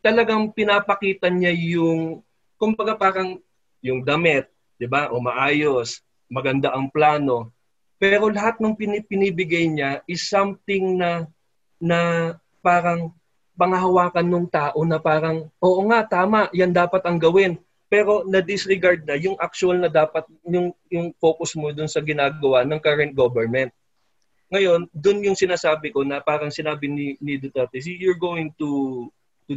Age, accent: 20-39, native